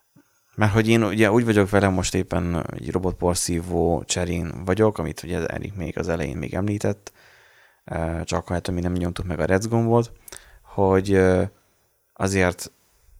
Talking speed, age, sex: 155 wpm, 20-39, male